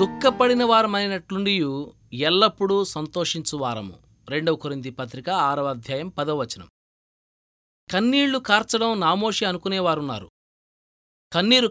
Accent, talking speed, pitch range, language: native, 70 wpm, 145-215 Hz, Telugu